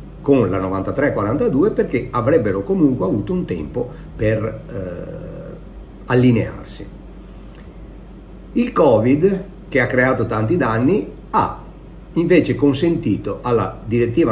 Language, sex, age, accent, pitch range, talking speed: Italian, male, 50-69, native, 110-160 Hz, 100 wpm